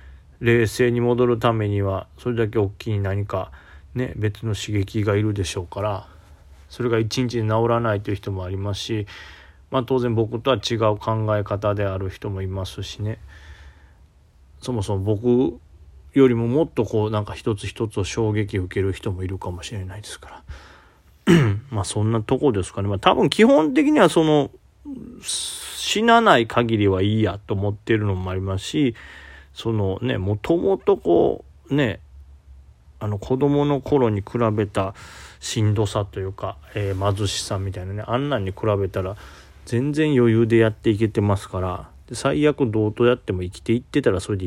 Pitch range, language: 95-120 Hz, Japanese